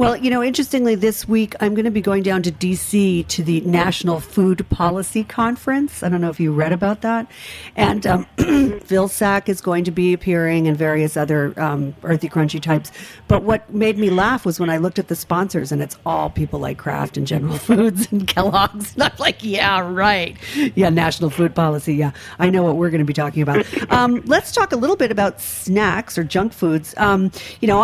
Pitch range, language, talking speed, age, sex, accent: 160-205 Hz, English, 210 wpm, 50-69, female, American